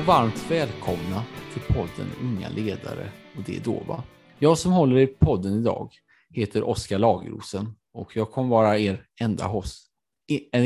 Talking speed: 165 wpm